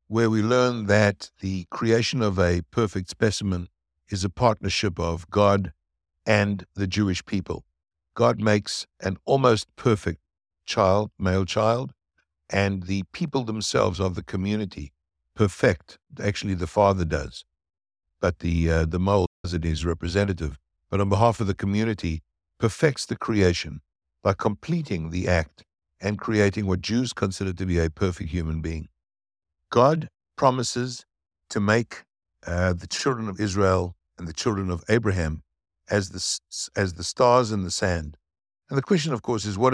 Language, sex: English, male